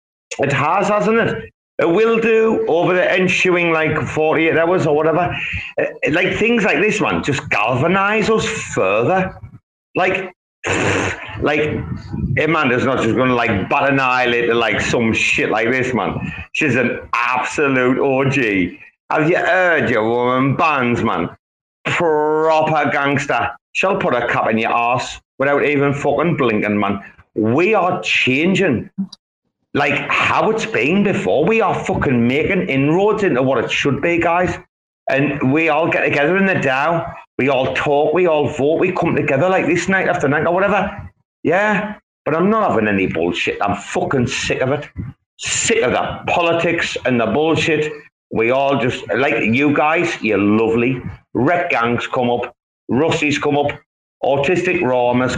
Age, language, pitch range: 30-49, English, 125-180 Hz